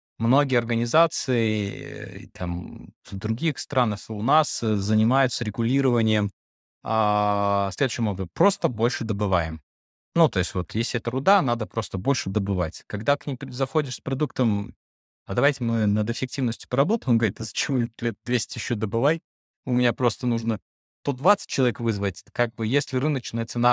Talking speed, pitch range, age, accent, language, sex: 150 wpm, 95-130 Hz, 20-39, native, Russian, male